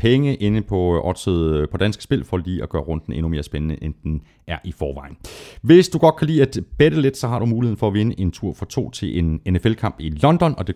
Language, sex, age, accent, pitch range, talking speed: Danish, male, 30-49, native, 80-120 Hz, 255 wpm